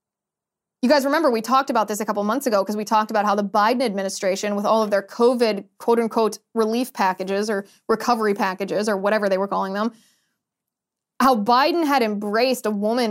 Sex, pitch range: female, 210-260 Hz